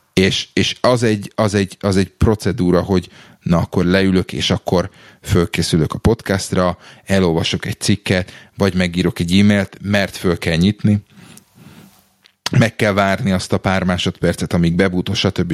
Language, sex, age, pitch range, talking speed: Hungarian, male, 30-49, 90-105 Hz, 150 wpm